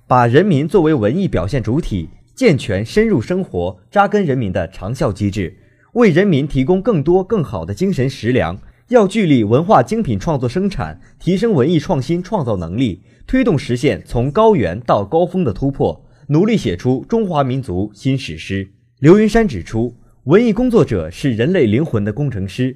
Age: 20-39